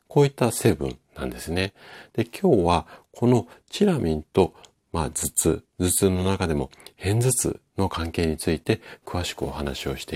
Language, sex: Japanese, male